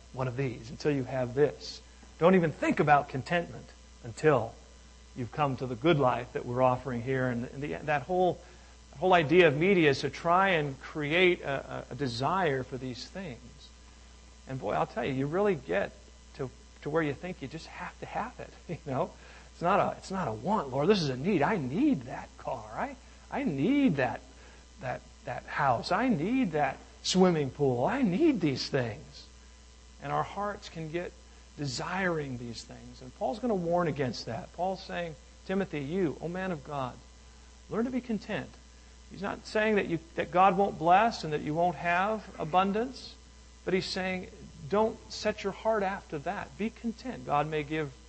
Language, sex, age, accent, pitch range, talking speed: English, male, 50-69, American, 125-185 Hz, 190 wpm